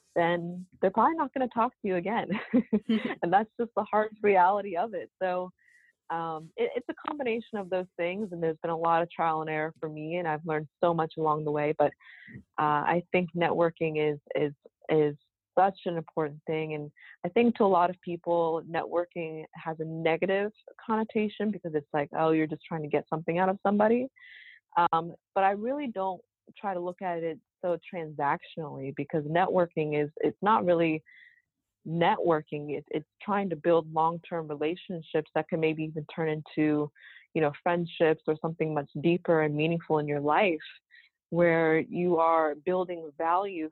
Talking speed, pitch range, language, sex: 180 wpm, 155-185 Hz, English, female